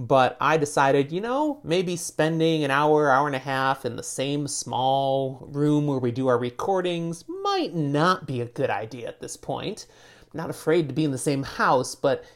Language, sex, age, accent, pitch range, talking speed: English, male, 30-49, American, 135-170 Hz, 200 wpm